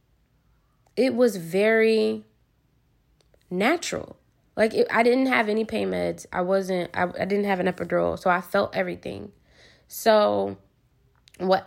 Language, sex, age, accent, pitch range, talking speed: English, female, 10-29, American, 180-220 Hz, 130 wpm